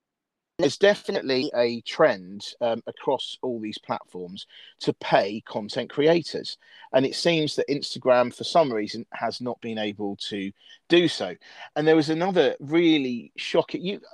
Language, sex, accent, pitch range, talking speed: English, male, British, 115-160 Hz, 150 wpm